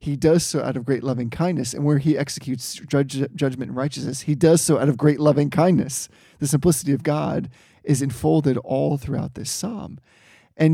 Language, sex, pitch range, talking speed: English, male, 130-155 Hz, 190 wpm